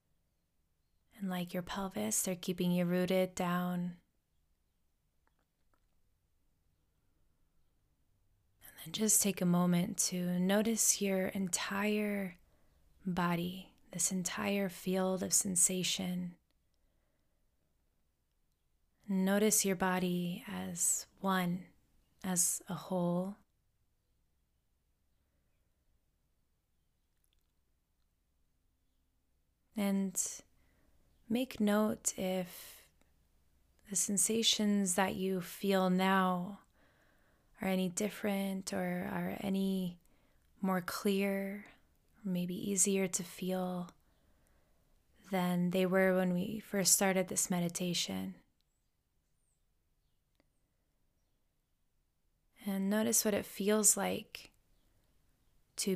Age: 20-39